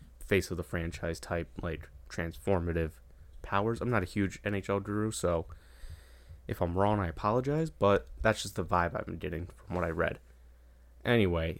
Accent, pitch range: American, 80-100 Hz